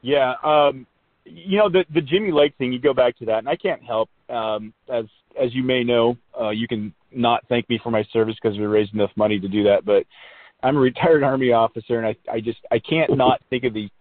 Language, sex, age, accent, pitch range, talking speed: English, male, 40-59, American, 105-130 Hz, 245 wpm